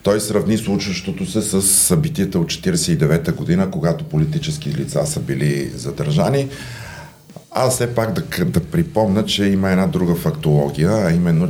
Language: Bulgarian